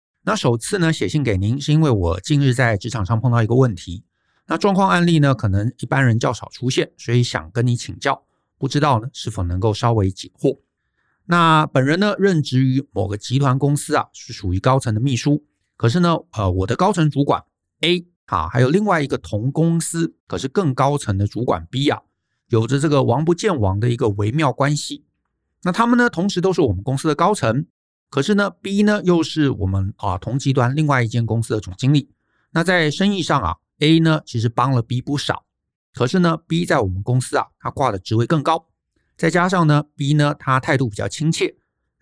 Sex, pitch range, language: male, 115-160 Hz, Chinese